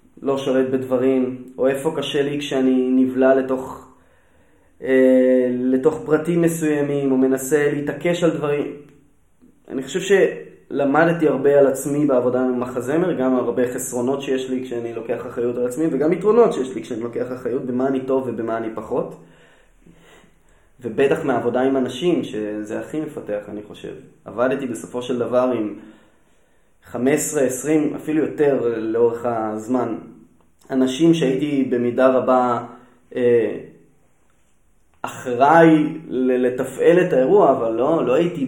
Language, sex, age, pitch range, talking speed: Hebrew, male, 20-39, 120-145 Hz, 135 wpm